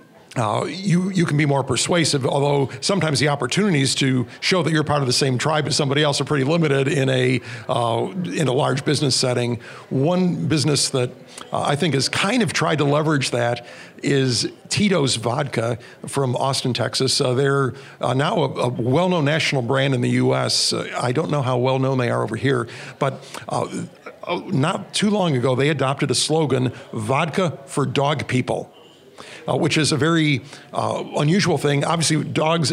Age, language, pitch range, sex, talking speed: 60-79, English, 130-155 Hz, male, 185 wpm